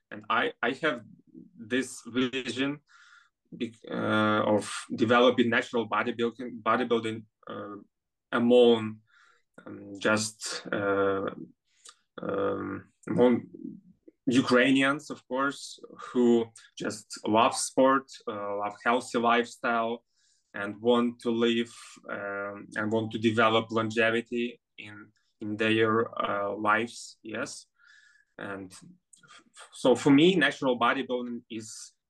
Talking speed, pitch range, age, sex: 100 wpm, 110-120 Hz, 20-39, male